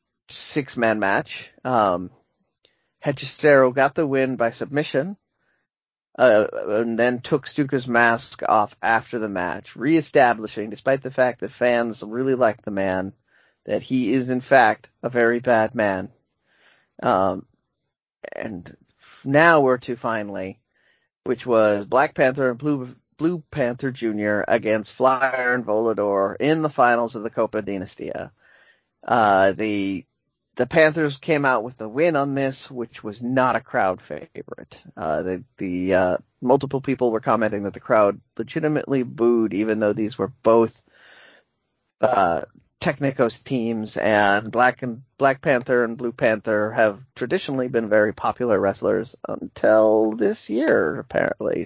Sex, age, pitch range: male, 30-49, 110-135 Hz